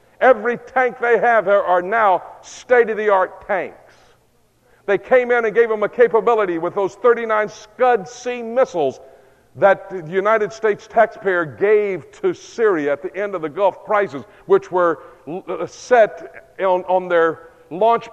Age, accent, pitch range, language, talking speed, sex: 50-69, American, 185-225 Hz, English, 150 wpm, male